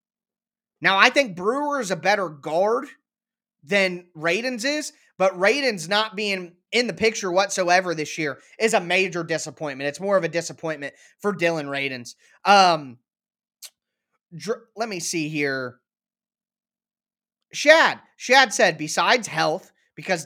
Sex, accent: male, American